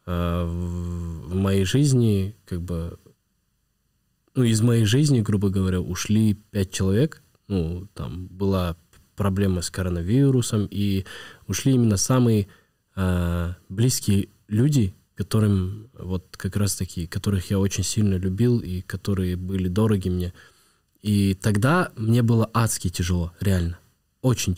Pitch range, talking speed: 95-110 Hz, 120 wpm